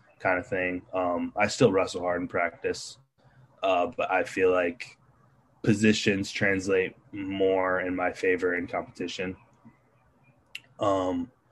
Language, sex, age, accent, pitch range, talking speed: English, male, 20-39, American, 95-125 Hz, 125 wpm